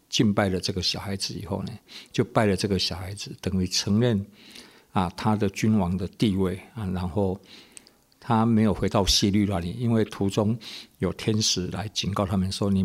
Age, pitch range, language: 60-79, 95-110 Hz, Chinese